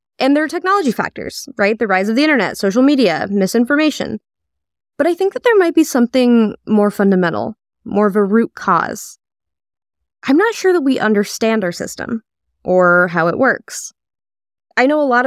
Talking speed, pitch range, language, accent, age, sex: 175 wpm, 195-270 Hz, English, American, 20-39, female